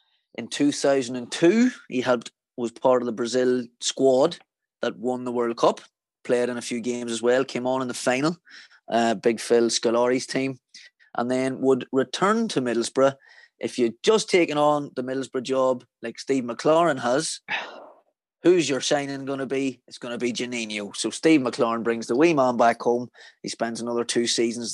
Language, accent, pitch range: English, British, 115-135 Hz